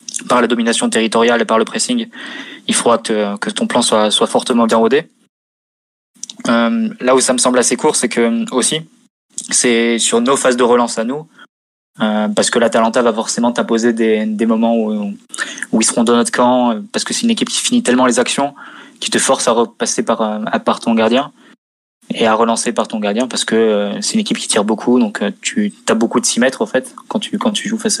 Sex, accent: male, French